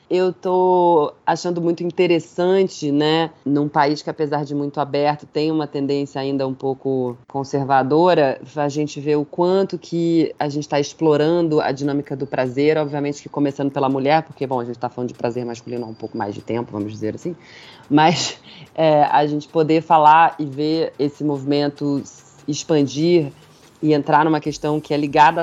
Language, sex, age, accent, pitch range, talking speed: Portuguese, female, 20-39, Brazilian, 135-155 Hz, 170 wpm